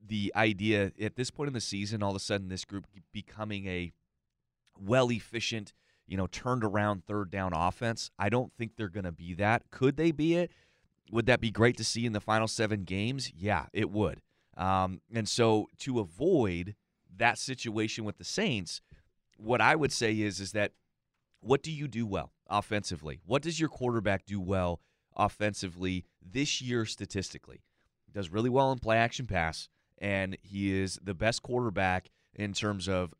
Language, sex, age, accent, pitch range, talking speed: English, male, 30-49, American, 95-115 Hz, 175 wpm